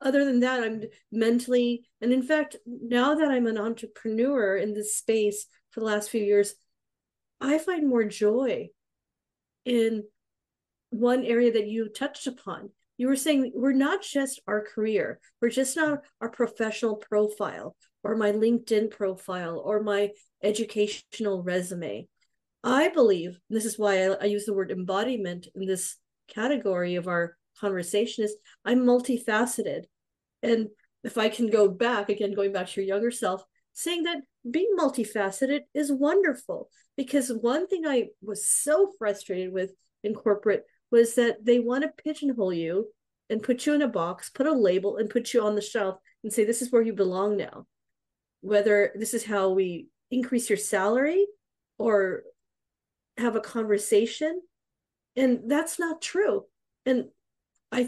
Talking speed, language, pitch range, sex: 160 wpm, English, 205-260 Hz, female